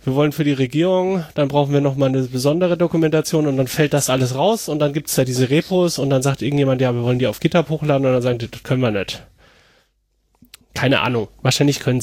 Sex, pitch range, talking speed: male, 135-170 Hz, 240 wpm